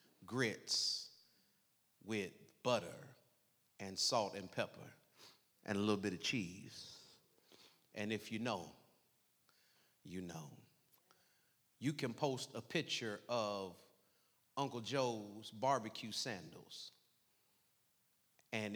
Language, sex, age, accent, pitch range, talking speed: English, male, 30-49, American, 105-130 Hz, 95 wpm